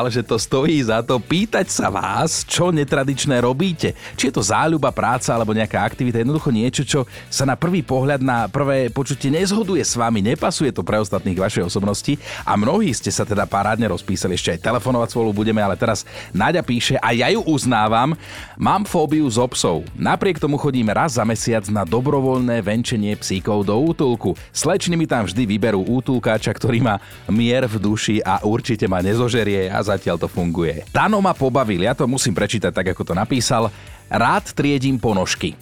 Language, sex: Slovak, male